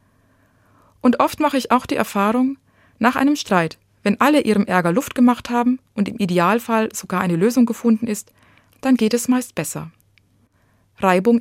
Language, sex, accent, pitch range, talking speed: German, female, German, 150-240 Hz, 165 wpm